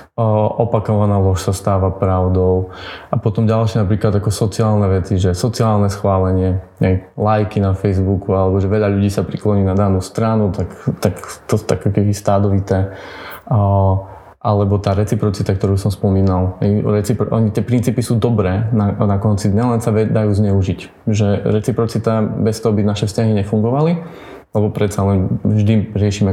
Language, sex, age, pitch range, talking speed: Slovak, male, 20-39, 100-110 Hz, 155 wpm